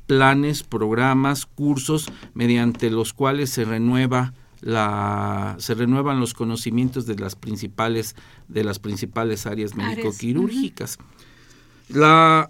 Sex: male